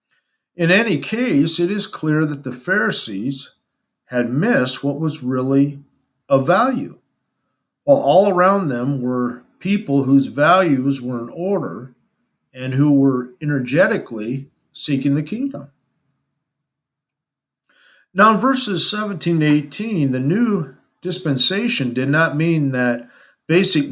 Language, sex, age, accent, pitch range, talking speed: English, male, 50-69, American, 130-175 Hz, 115 wpm